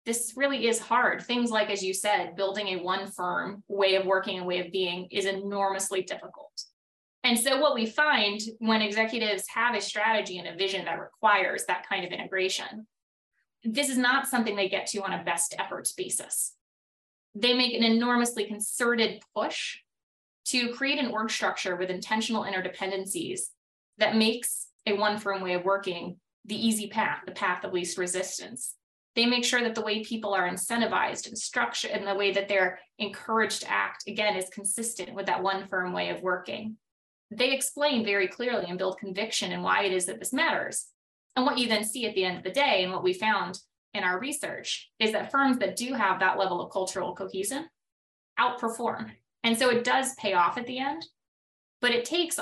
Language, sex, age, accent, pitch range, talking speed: English, female, 20-39, American, 190-240 Hz, 190 wpm